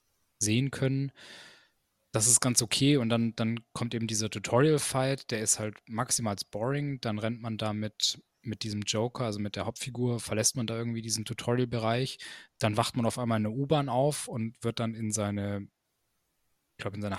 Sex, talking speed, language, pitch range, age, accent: male, 185 wpm, German, 110-135 Hz, 20-39, German